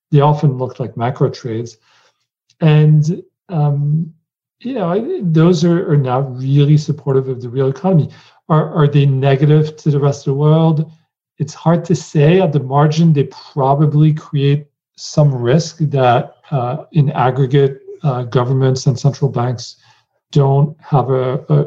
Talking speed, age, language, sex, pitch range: 150 wpm, 40-59, English, male, 135-165 Hz